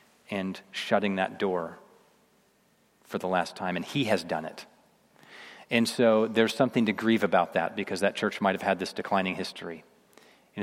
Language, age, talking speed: English, 40-59, 175 wpm